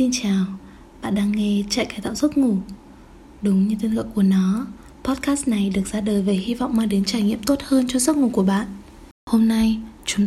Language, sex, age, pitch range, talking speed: Vietnamese, female, 20-39, 205-250 Hz, 220 wpm